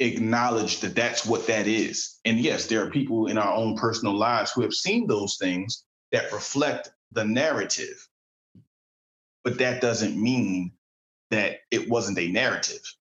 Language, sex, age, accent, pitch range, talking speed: English, male, 30-49, American, 100-120 Hz, 155 wpm